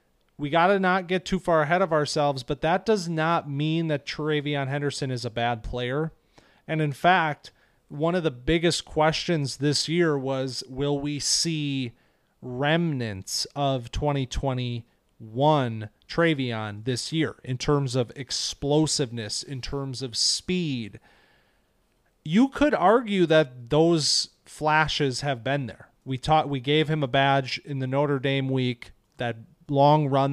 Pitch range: 130-160 Hz